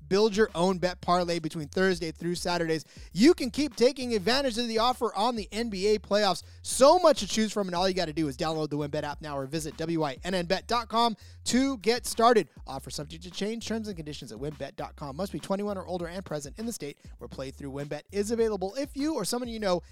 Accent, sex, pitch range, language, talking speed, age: American, male, 160-230 Hz, English, 225 wpm, 30-49